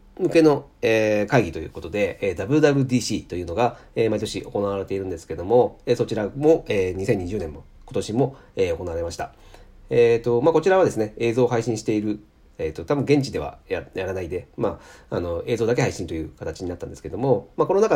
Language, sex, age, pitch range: Japanese, male, 40-59, 95-140 Hz